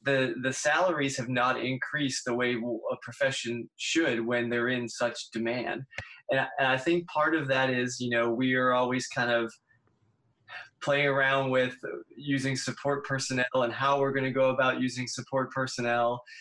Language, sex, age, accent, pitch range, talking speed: English, male, 20-39, American, 120-140 Hz, 170 wpm